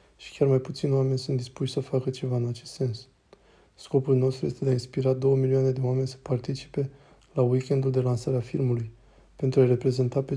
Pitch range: 130-140 Hz